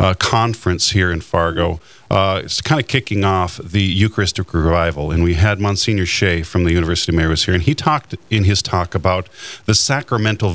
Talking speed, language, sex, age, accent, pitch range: 200 wpm, English, male, 40-59, American, 95-110 Hz